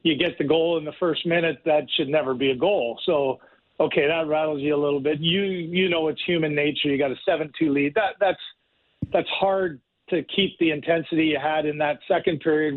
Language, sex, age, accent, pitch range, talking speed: English, male, 40-59, American, 145-170 Hz, 220 wpm